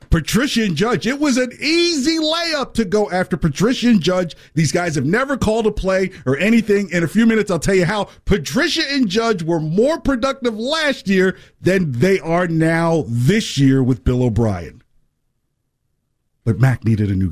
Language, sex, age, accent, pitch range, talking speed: English, male, 50-69, American, 145-220 Hz, 185 wpm